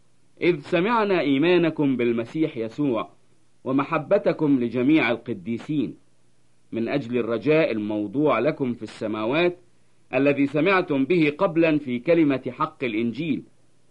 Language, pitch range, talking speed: English, 115-160 Hz, 100 wpm